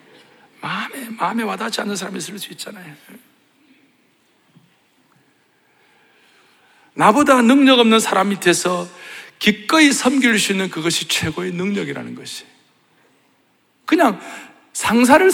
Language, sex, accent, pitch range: Korean, male, native, 140-225 Hz